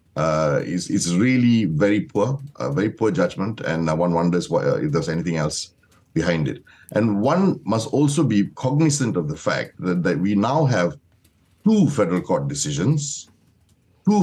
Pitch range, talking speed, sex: 95-150 Hz, 155 wpm, male